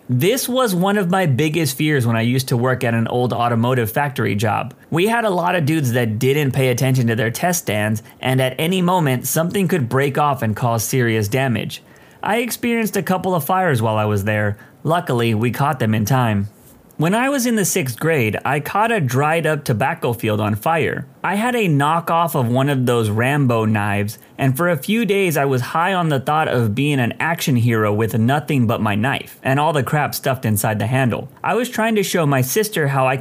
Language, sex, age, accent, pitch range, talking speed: English, male, 30-49, American, 120-165 Hz, 225 wpm